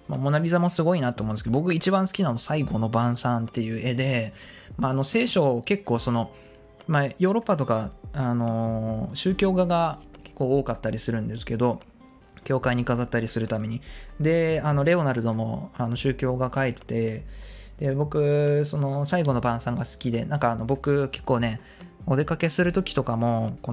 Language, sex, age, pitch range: Japanese, male, 20-39, 115-160 Hz